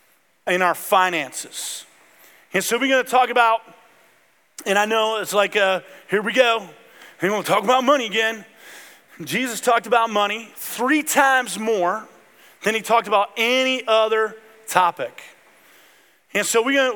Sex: male